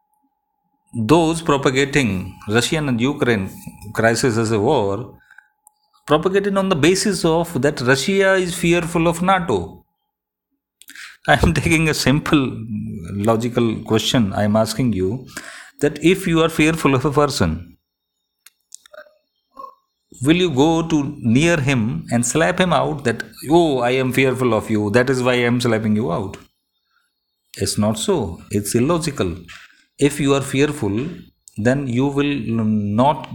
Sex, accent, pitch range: male, native, 110-170 Hz